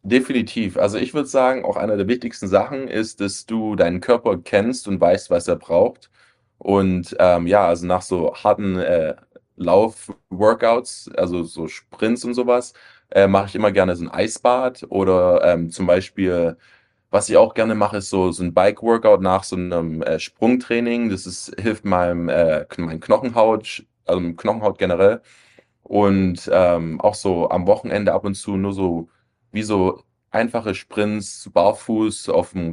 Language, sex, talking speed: German, male, 160 wpm